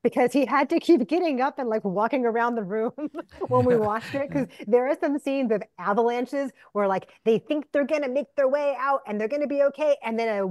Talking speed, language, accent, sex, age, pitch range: 240 wpm, English, American, female, 30-49, 185-235 Hz